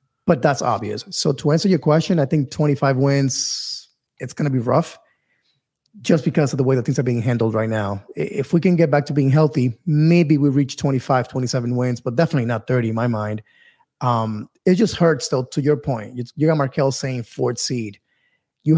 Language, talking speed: English, 210 wpm